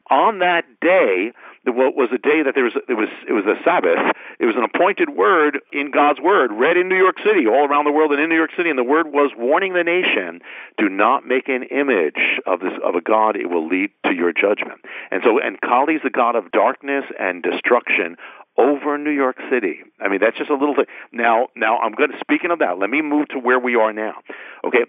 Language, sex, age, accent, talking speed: English, male, 50-69, American, 240 wpm